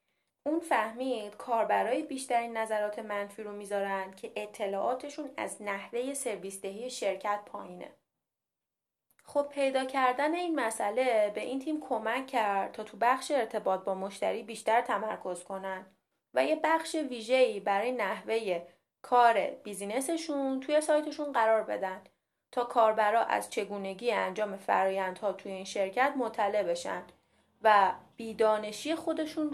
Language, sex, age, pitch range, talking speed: Persian, female, 30-49, 205-265 Hz, 120 wpm